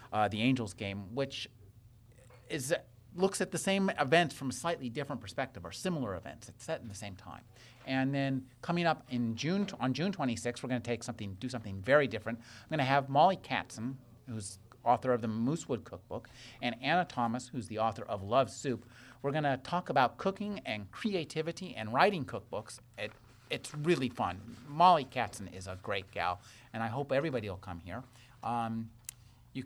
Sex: male